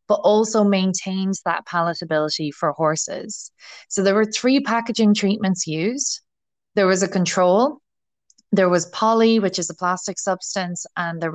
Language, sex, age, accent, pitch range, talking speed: English, female, 20-39, Irish, 165-210 Hz, 150 wpm